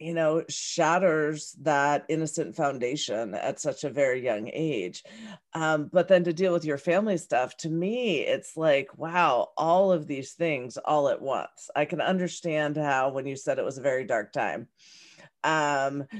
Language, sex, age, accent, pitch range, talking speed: English, female, 40-59, American, 145-175 Hz, 175 wpm